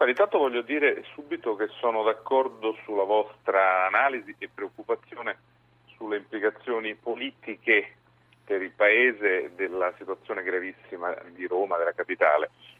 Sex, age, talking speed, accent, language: male, 40-59, 115 wpm, native, Italian